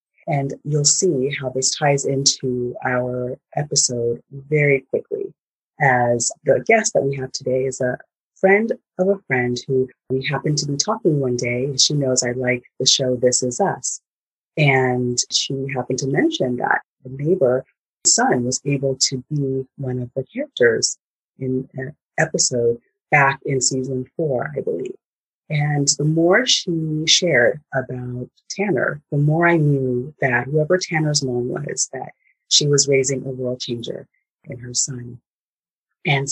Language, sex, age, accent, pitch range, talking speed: English, female, 30-49, American, 130-155 Hz, 155 wpm